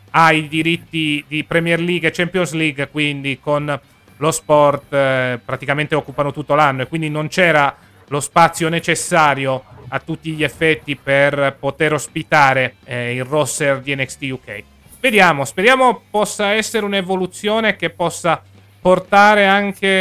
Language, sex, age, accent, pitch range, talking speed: Italian, male, 30-49, native, 135-175 Hz, 140 wpm